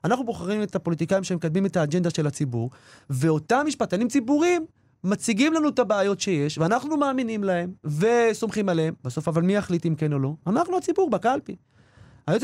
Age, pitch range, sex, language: 30-49, 160-230 Hz, male, Hebrew